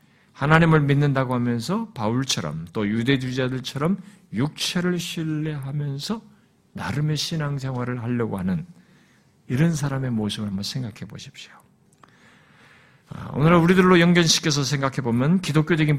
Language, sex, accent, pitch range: Korean, male, native, 125-180 Hz